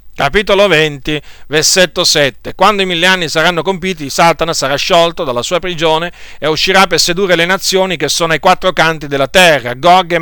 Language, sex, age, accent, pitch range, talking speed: Italian, male, 40-59, native, 120-175 Hz, 180 wpm